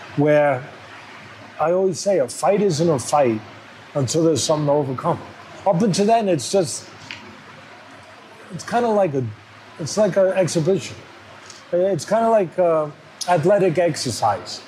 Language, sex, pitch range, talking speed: English, male, 125-190 Hz, 145 wpm